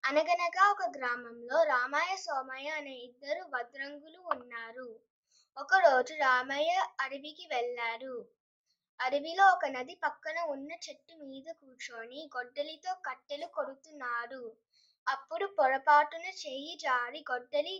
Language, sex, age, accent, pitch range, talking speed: Telugu, female, 20-39, native, 250-330 Hz, 100 wpm